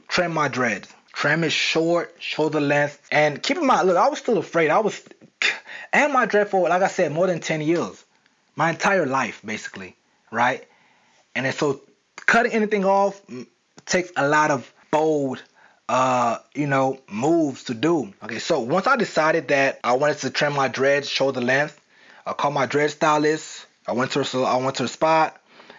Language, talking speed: English, 185 wpm